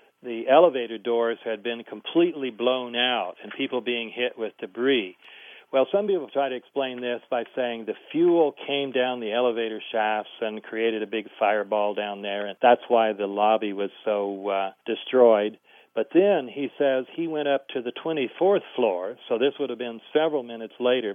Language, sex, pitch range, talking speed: English, male, 110-135 Hz, 185 wpm